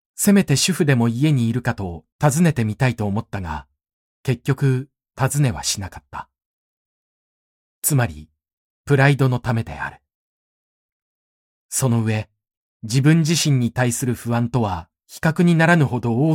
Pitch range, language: 100-155 Hz, Japanese